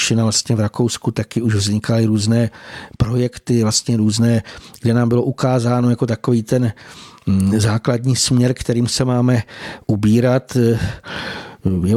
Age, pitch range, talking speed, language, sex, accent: 50-69, 110-125 Hz, 105 wpm, Czech, male, native